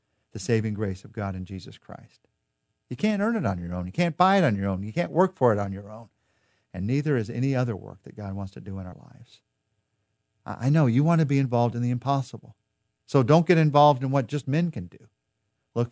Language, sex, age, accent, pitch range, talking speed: English, male, 50-69, American, 105-140 Hz, 245 wpm